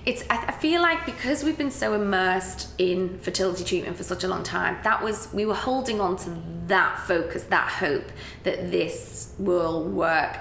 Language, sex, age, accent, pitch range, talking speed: English, female, 20-39, British, 180-210 Hz, 185 wpm